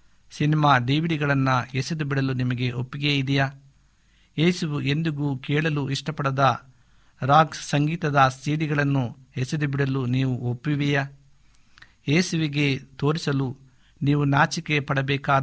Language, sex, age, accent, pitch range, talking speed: Kannada, male, 50-69, native, 130-150 Hz, 85 wpm